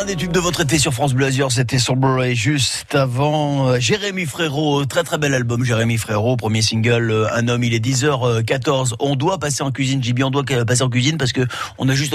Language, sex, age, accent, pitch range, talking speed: French, male, 30-49, French, 120-155 Hz, 215 wpm